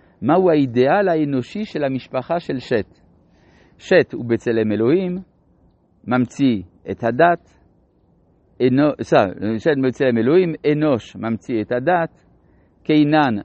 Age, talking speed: 50-69, 85 wpm